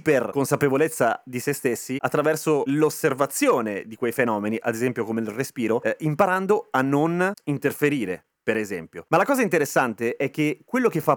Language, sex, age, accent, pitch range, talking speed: Italian, male, 30-49, native, 130-170 Hz, 165 wpm